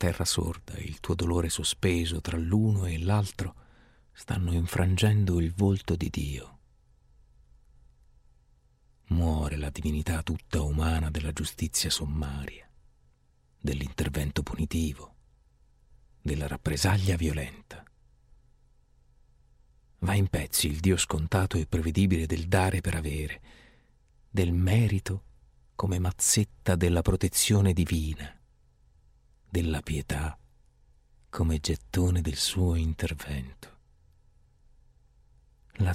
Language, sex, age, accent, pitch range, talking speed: Italian, male, 40-59, native, 65-95 Hz, 95 wpm